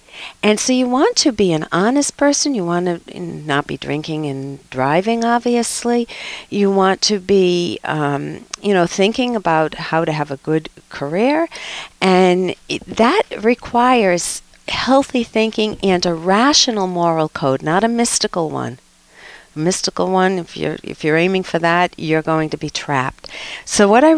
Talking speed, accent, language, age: 165 wpm, American, English, 50-69